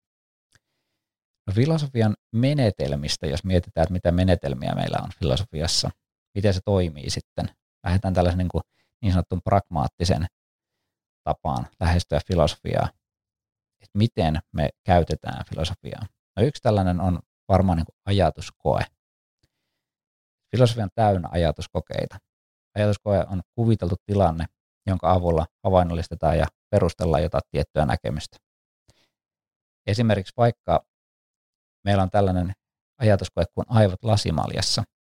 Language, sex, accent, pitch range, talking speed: Finnish, male, native, 85-105 Hz, 105 wpm